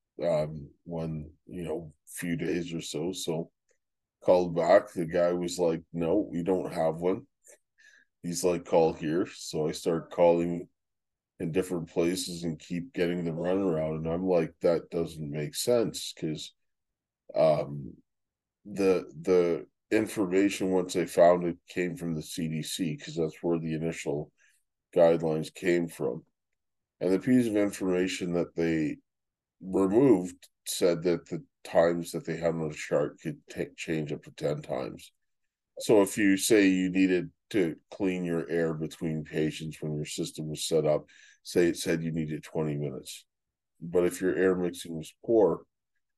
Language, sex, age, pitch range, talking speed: English, male, 20-39, 80-90 Hz, 160 wpm